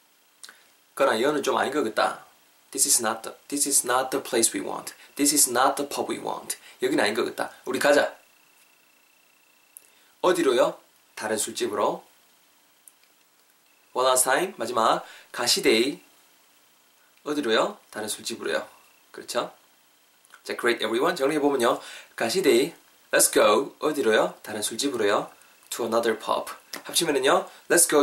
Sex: male